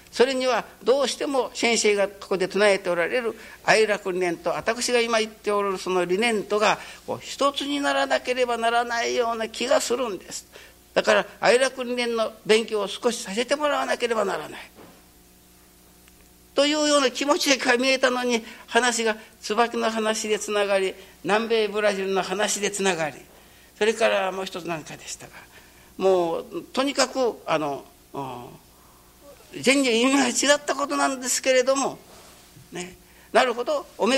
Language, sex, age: Japanese, male, 60-79